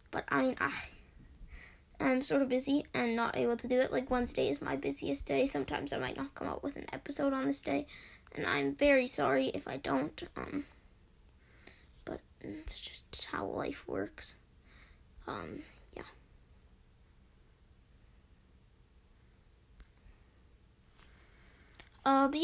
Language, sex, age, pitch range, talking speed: English, female, 10-29, 225-280 Hz, 135 wpm